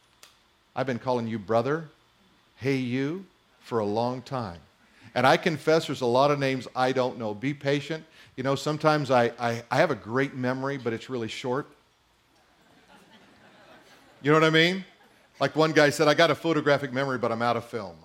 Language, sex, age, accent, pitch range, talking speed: English, male, 50-69, American, 120-190 Hz, 190 wpm